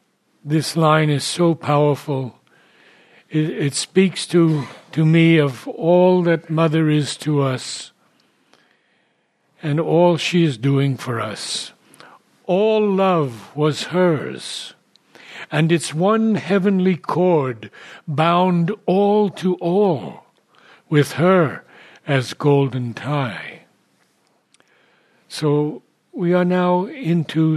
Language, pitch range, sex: English, 140-180 Hz, male